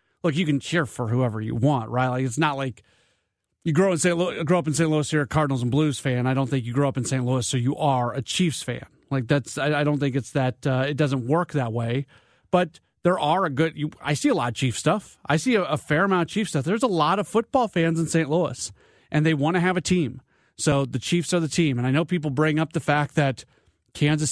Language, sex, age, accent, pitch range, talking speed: English, male, 40-59, American, 135-165 Hz, 270 wpm